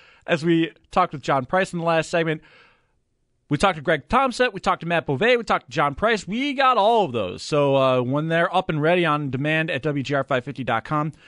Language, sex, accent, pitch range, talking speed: English, male, American, 140-195 Hz, 220 wpm